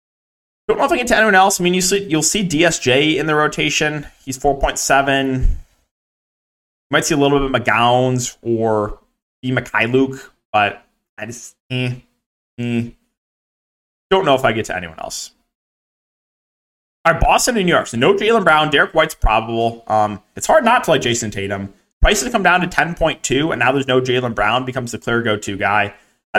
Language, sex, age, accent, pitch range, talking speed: English, male, 20-39, American, 115-155 Hz, 190 wpm